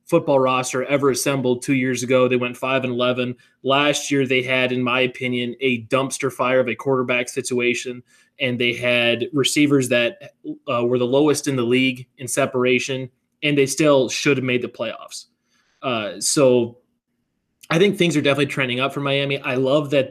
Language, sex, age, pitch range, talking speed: English, male, 20-39, 125-145 Hz, 185 wpm